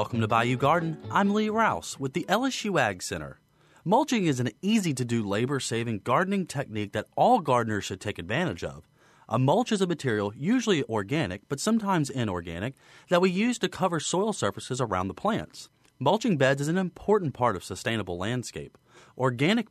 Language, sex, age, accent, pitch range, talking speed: English, male, 30-49, American, 115-180 Hz, 170 wpm